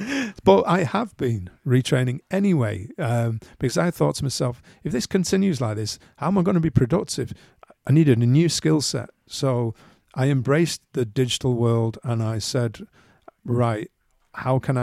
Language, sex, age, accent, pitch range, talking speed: English, male, 40-59, British, 110-135 Hz, 170 wpm